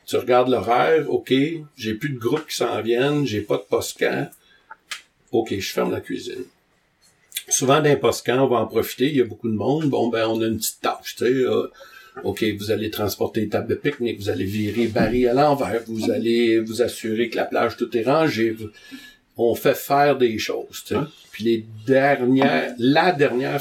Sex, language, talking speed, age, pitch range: male, French, 205 wpm, 60-79, 110-140 Hz